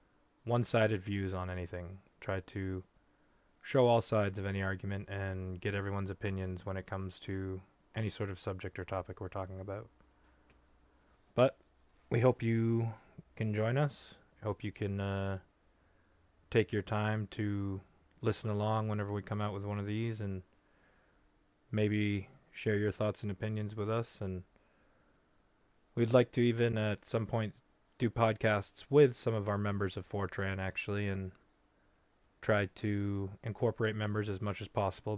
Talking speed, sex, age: 155 wpm, male, 20-39